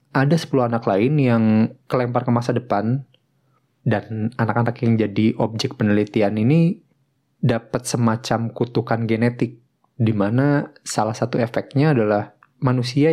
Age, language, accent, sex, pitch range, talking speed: 20-39, Indonesian, native, male, 115-140 Hz, 125 wpm